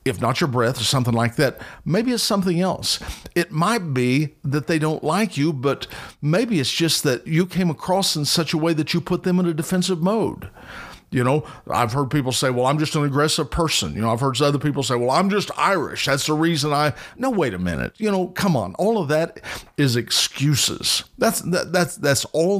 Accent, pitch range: American, 125-170 Hz